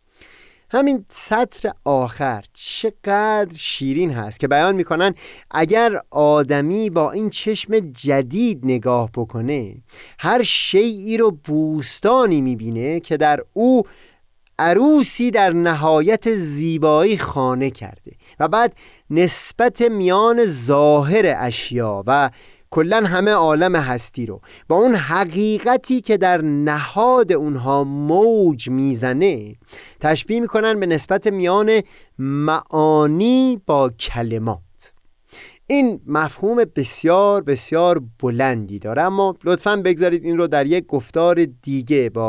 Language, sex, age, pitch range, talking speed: Persian, male, 30-49, 130-195 Hz, 110 wpm